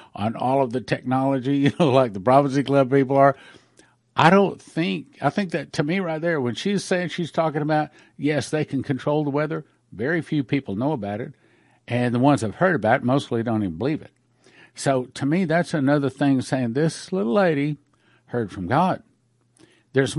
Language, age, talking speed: English, 50-69, 195 wpm